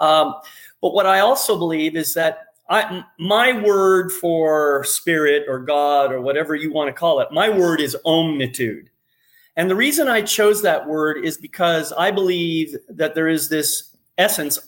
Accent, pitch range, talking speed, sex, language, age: American, 155-210 Hz, 170 wpm, male, English, 40-59